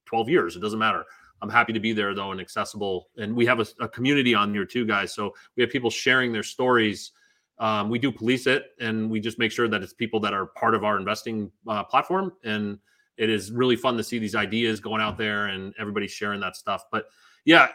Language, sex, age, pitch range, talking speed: English, male, 30-49, 110-160 Hz, 235 wpm